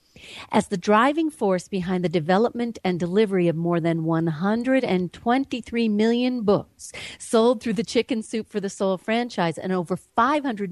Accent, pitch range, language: American, 175-235 Hz, English